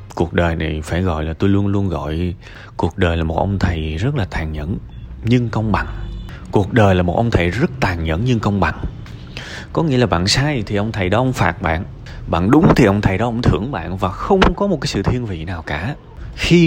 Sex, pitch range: male, 90-120 Hz